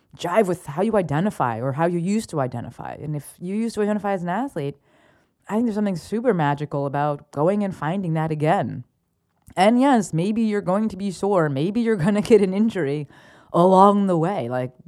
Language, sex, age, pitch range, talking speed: English, female, 30-49, 150-200 Hz, 205 wpm